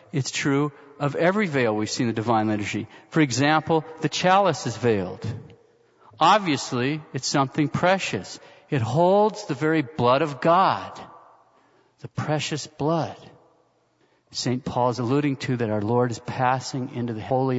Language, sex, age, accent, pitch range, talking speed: English, male, 50-69, American, 130-185 Hz, 150 wpm